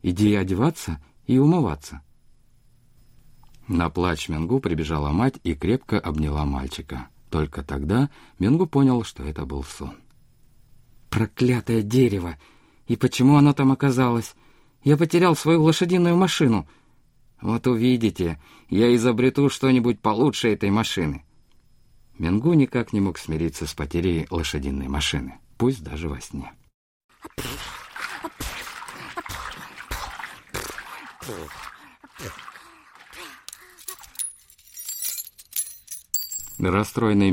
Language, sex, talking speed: Russian, male, 90 wpm